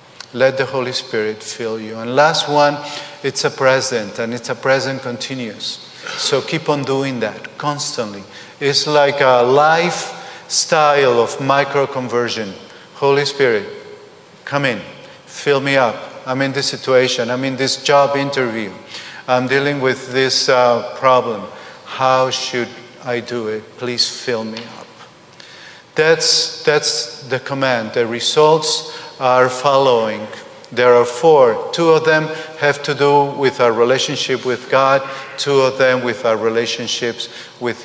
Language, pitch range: English, 125-155 Hz